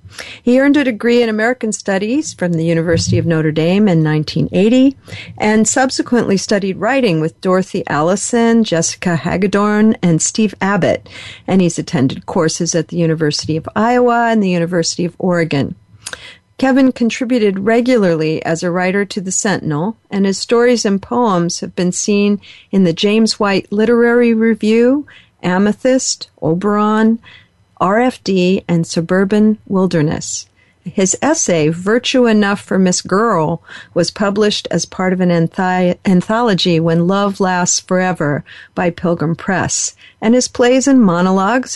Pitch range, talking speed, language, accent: 170-220 Hz, 140 wpm, English, American